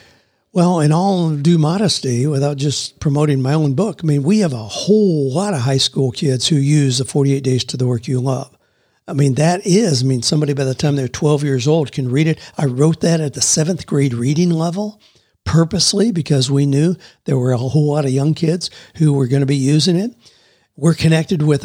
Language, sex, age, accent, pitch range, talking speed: English, male, 60-79, American, 135-165 Hz, 220 wpm